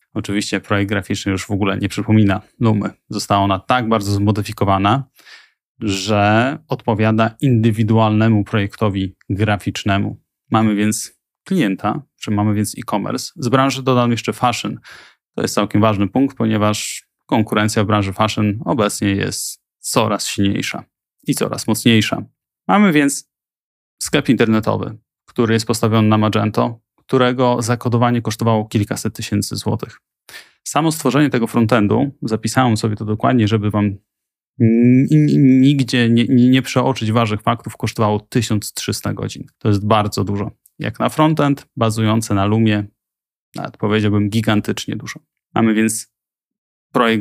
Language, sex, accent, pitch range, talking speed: Polish, male, native, 105-120 Hz, 130 wpm